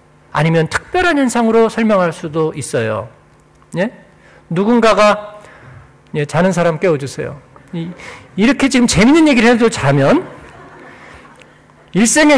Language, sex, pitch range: Korean, male, 145-235 Hz